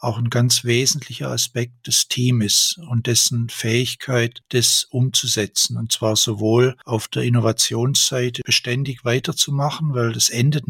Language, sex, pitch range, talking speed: German, male, 115-130 Hz, 130 wpm